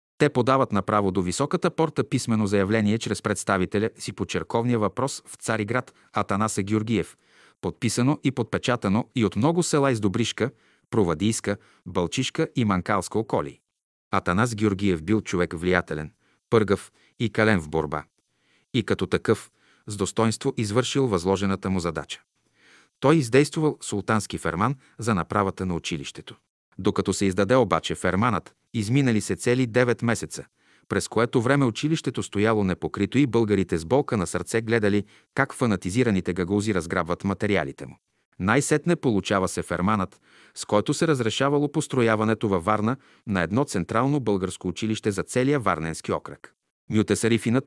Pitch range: 95-125 Hz